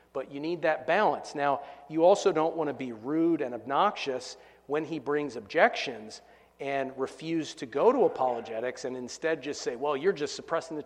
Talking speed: 190 wpm